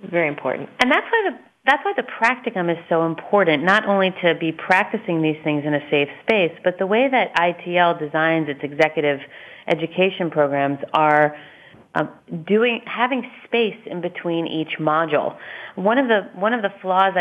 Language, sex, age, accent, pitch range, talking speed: English, female, 30-49, American, 155-200 Hz, 175 wpm